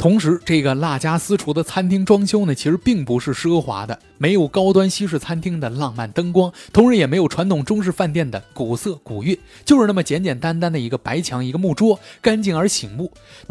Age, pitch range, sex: 20-39, 125-190 Hz, male